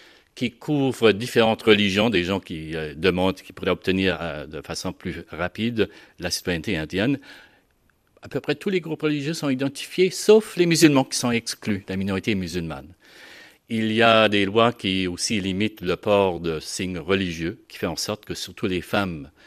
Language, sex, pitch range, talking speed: French, male, 90-115 Hz, 185 wpm